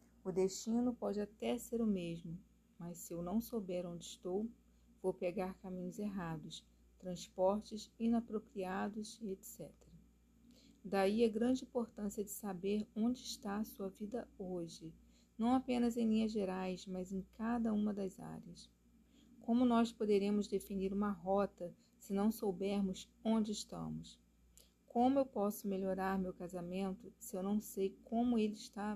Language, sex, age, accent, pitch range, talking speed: Portuguese, female, 40-59, Brazilian, 185-225 Hz, 140 wpm